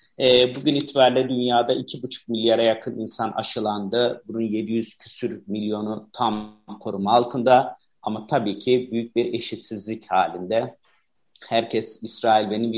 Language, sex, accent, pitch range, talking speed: Turkish, male, native, 105-120 Hz, 120 wpm